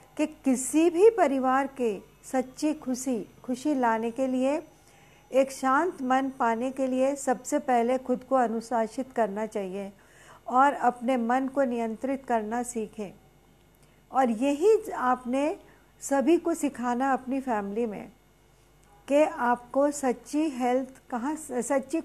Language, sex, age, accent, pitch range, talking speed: Hindi, female, 50-69, native, 250-295 Hz, 125 wpm